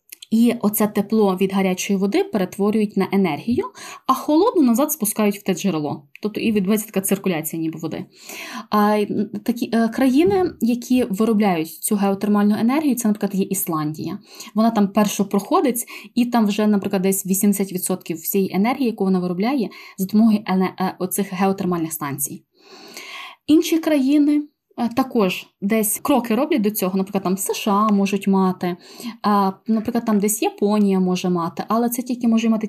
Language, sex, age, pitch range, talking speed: Ukrainian, female, 20-39, 195-245 Hz, 145 wpm